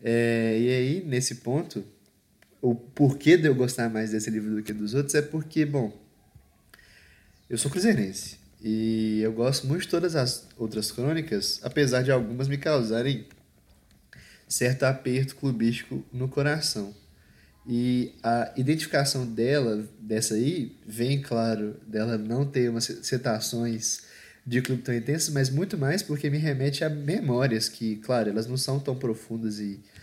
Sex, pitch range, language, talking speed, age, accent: male, 110-135 Hz, Portuguese, 150 wpm, 20-39, Brazilian